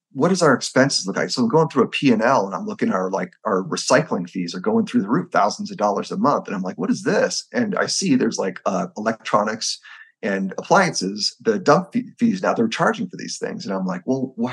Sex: male